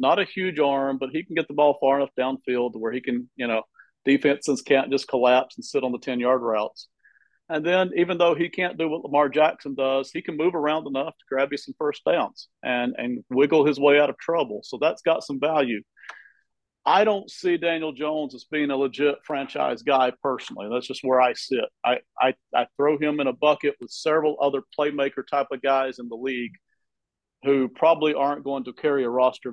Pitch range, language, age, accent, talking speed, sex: 130-155 Hz, English, 40-59, American, 215 wpm, male